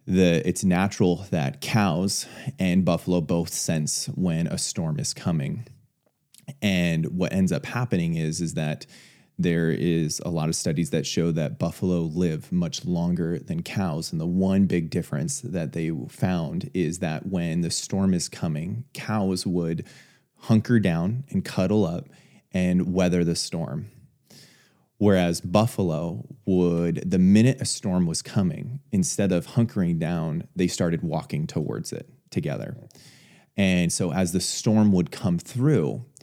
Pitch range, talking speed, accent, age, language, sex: 85-120 Hz, 150 wpm, American, 30-49, English, male